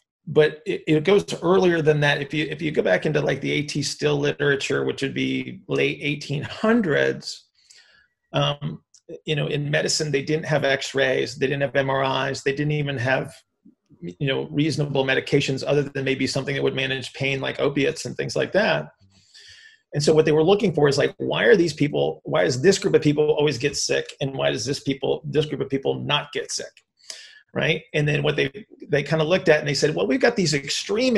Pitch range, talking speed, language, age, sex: 140-175 Hz, 215 wpm, English, 30-49, male